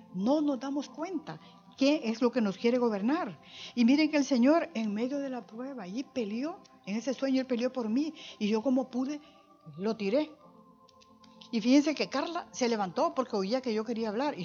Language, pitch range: Spanish, 210-280 Hz